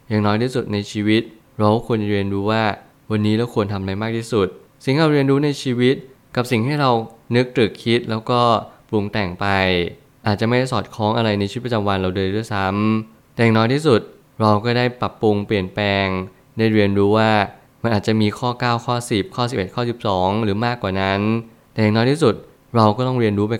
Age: 20-39